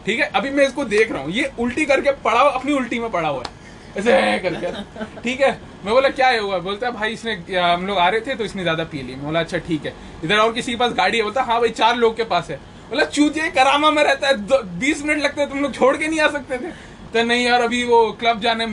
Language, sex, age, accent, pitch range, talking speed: English, male, 20-39, Indian, 195-260 Hz, 205 wpm